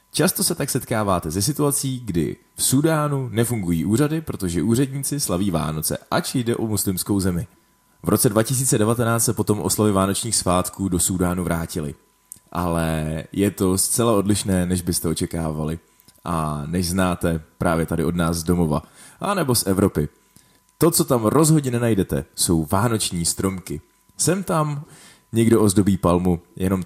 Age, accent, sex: 20-39, native, male